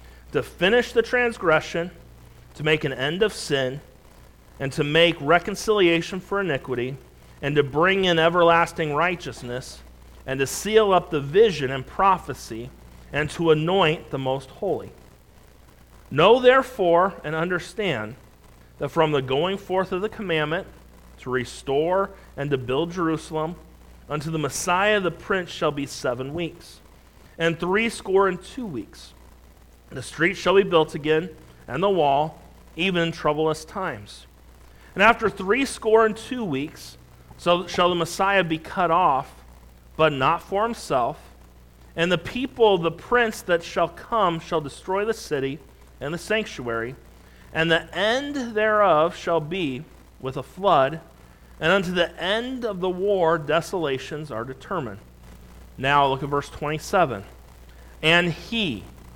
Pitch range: 125-185 Hz